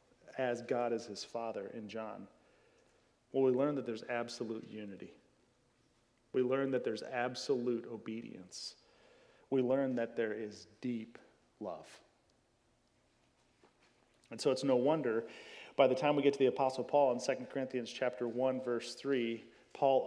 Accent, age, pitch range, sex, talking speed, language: American, 40-59, 120-140 Hz, male, 145 wpm, English